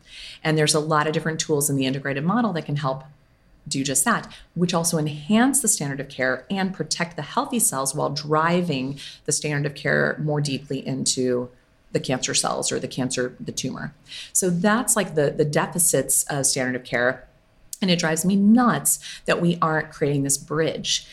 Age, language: 30-49, English